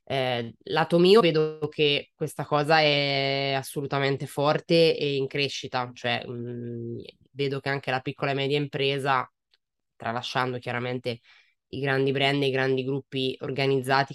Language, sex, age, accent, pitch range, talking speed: Italian, female, 20-39, native, 135-155 Hz, 140 wpm